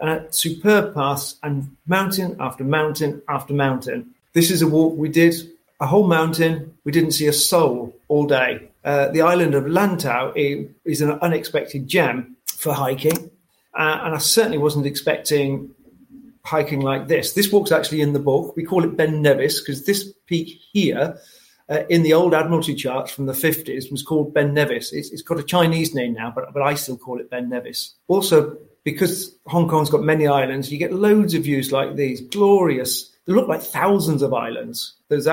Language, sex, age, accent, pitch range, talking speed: English, male, 40-59, British, 140-165 Hz, 190 wpm